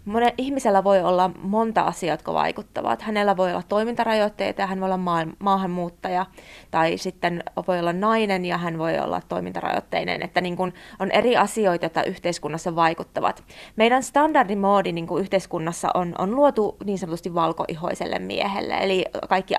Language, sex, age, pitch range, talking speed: Finnish, female, 20-39, 175-220 Hz, 155 wpm